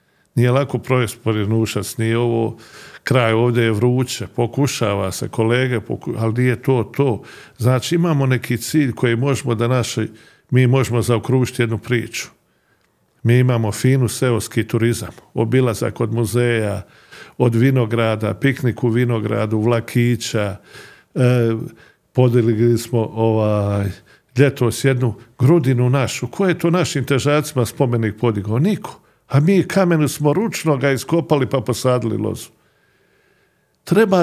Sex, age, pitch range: male, 50-69, 115-150 Hz